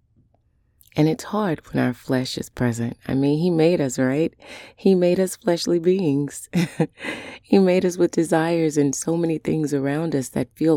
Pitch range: 115-150 Hz